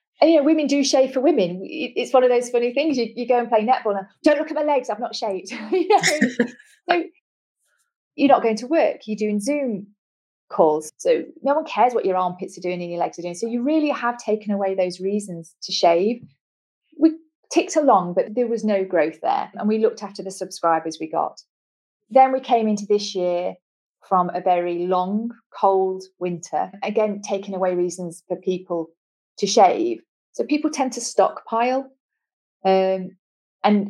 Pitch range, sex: 185-250 Hz, female